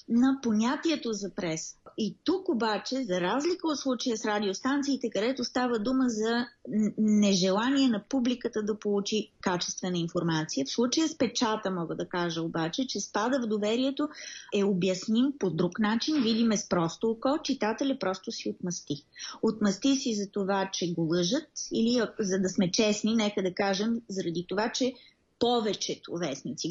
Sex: female